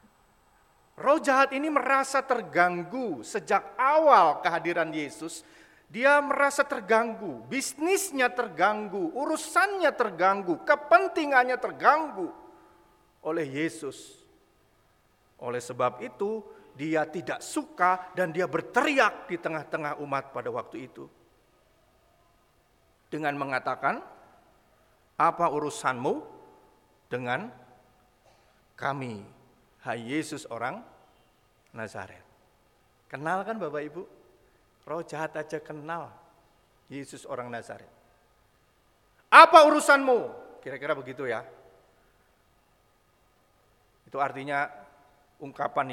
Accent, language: native, Indonesian